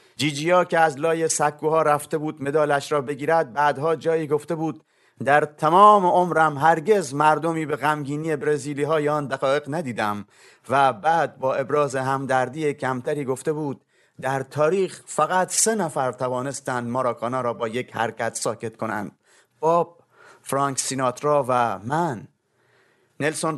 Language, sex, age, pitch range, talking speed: Persian, male, 30-49, 130-160 Hz, 135 wpm